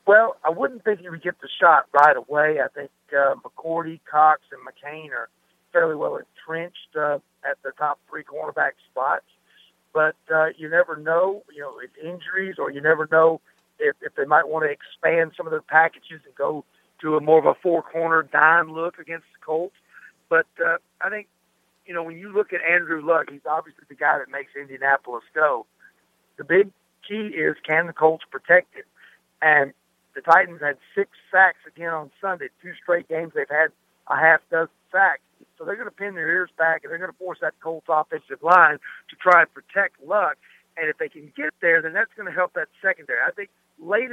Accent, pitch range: American, 155-190 Hz